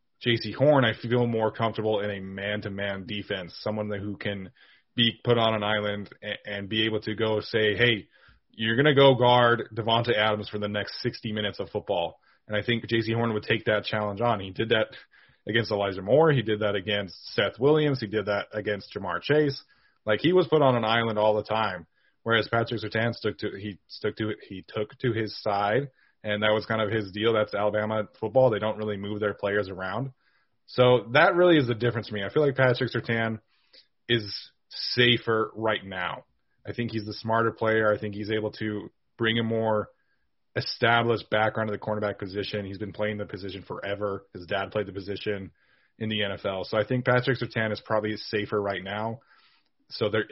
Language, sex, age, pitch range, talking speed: English, male, 30-49, 105-115 Hz, 205 wpm